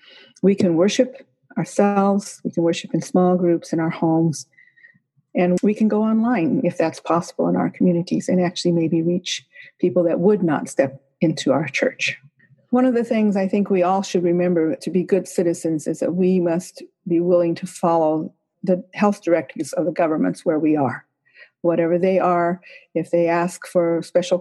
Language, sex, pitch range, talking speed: English, female, 165-185 Hz, 185 wpm